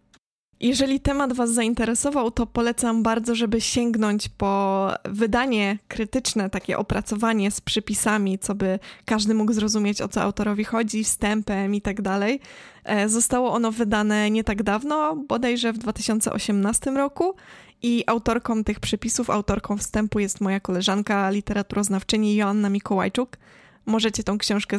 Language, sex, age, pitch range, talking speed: Polish, female, 20-39, 205-225 Hz, 130 wpm